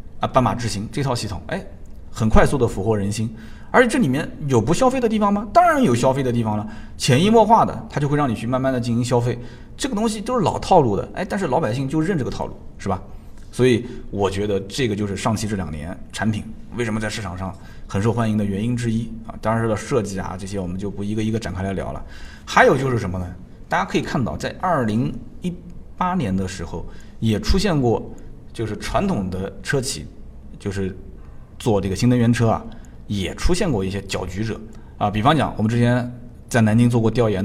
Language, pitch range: Chinese, 100-125 Hz